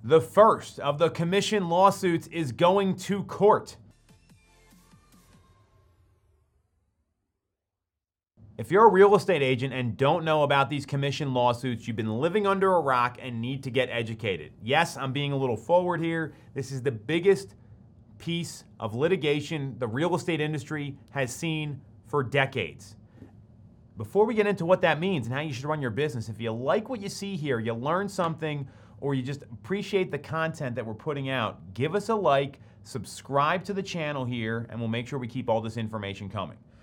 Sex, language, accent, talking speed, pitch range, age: male, English, American, 180 wpm, 110-160 Hz, 30-49